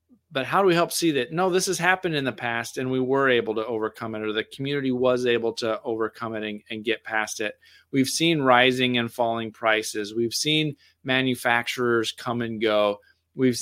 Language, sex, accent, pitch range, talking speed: English, male, American, 115-135 Hz, 205 wpm